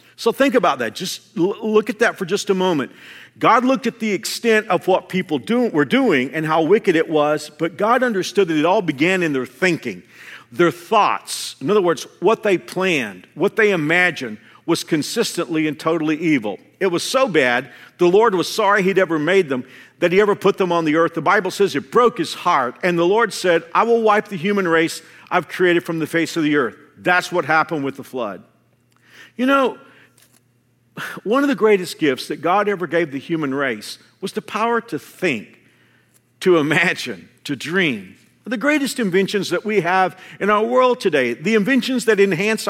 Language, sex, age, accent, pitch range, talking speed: English, male, 50-69, American, 165-220 Hz, 200 wpm